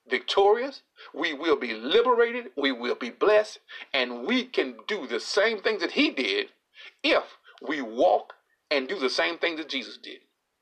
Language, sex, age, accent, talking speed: English, male, 50-69, American, 170 wpm